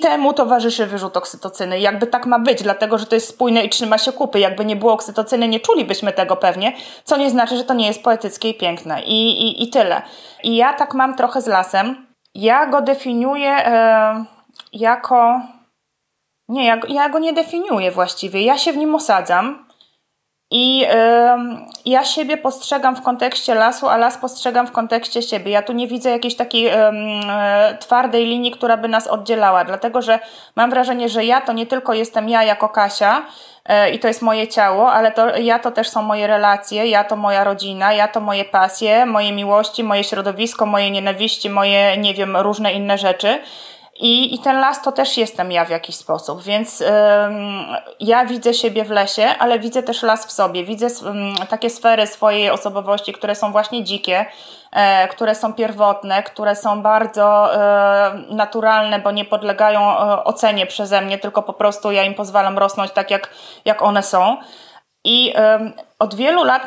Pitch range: 205-240 Hz